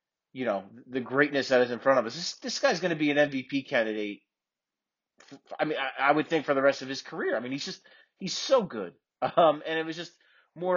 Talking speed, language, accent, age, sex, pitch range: 245 wpm, English, American, 30-49, male, 125-175 Hz